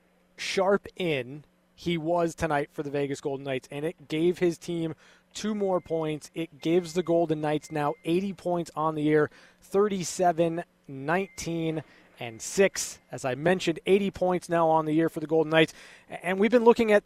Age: 20-39